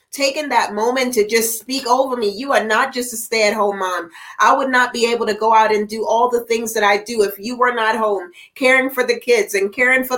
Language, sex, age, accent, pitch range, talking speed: English, female, 30-49, American, 215-255 Hz, 265 wpm